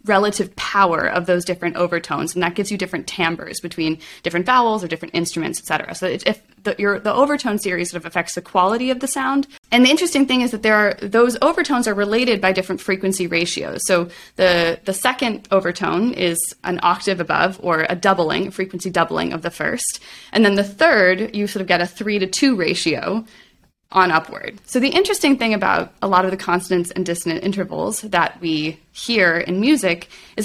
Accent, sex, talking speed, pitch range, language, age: American, female, 195 wpm, 175-225 Hz, English, 20-39